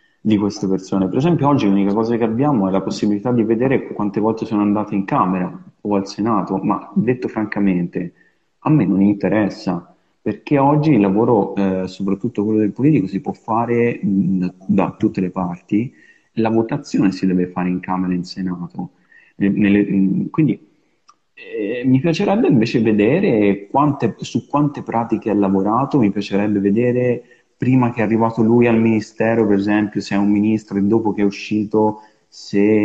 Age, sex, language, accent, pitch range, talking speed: 30-49, male, Italian, native, 100-115 Hz, 165 wpm